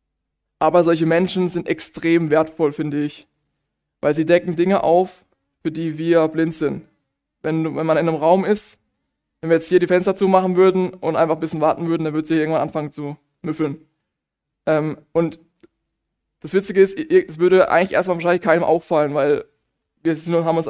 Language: German